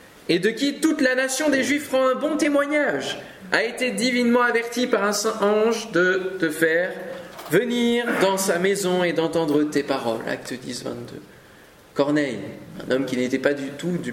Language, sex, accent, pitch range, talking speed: French, male, French, 170-235 Hz, 180 wpm